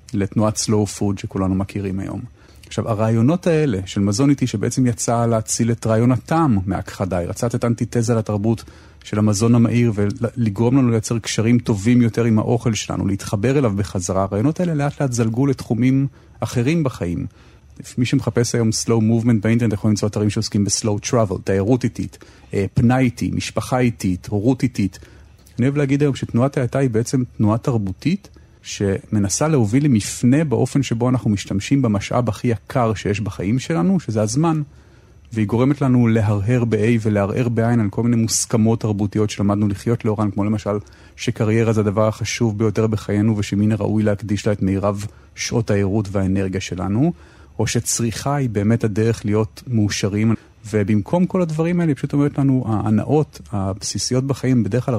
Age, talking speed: 40-59, 145 wpm